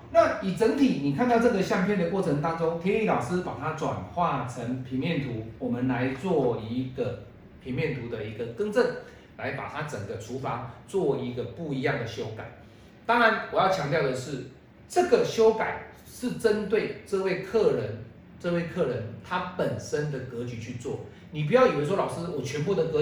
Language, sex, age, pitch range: Chinese, male, 40-59, 120-190 Hz